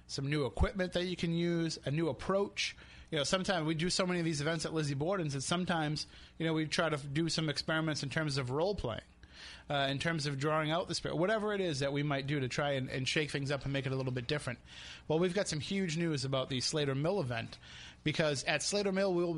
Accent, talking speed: American, 260 wpm